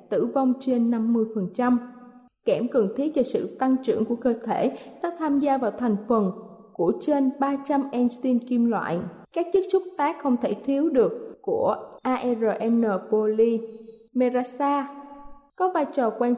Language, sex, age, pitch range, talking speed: Vietnamese, female, 20-39, 225-280 Hz, 150 wpm